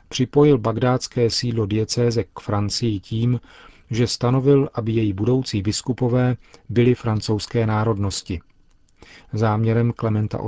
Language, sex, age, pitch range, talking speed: Czech, male, 40-59, 100-120 Hz, 105 wpm